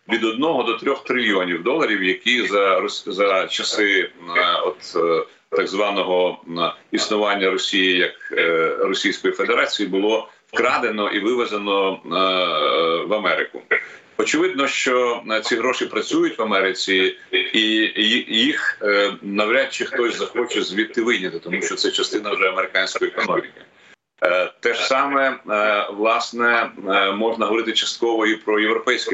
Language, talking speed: Ukrainian, 120 wpm